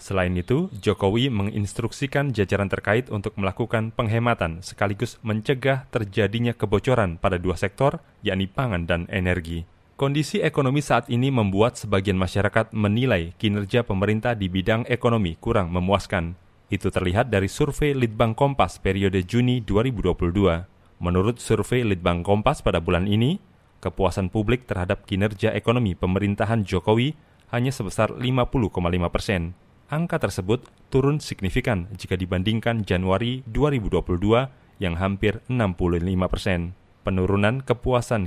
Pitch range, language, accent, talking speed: 95-120 Hz, Indonesian, native, 120 wpm